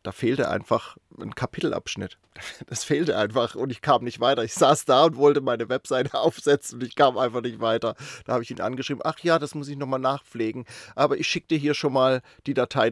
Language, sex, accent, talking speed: German, male, German, 225 wpm